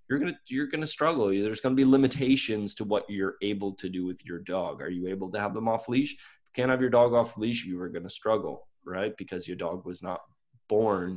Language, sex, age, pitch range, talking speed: English, male, 20-39, 90-105 Hz, 255 wpm